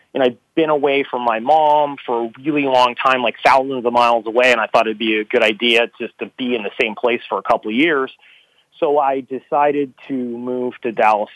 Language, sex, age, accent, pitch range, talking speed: English, male, 30-49, American, 125-150 Hz, 230 wpm